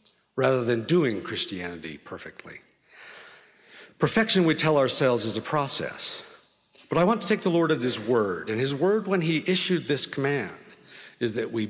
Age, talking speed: 50-69, 170 wpm